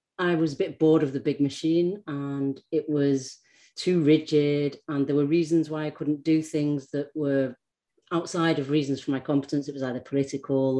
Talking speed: 195 wpm